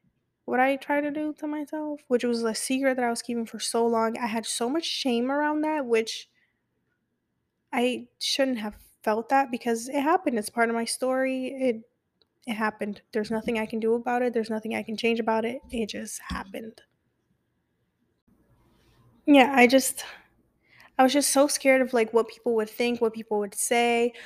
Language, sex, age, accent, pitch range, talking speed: English, female, 10-29, American, 220-255 Hz, 190 wpm